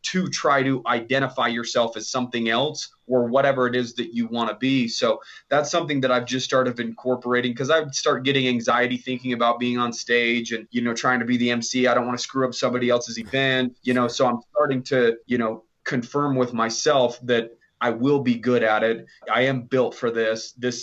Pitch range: 115-130 Hz